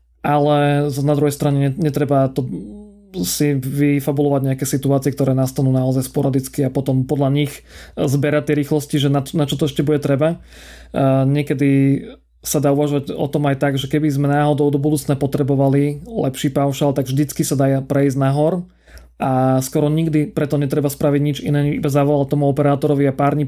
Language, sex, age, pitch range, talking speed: Slovak, male, 30-49, 135-150 Hz, 165 wpm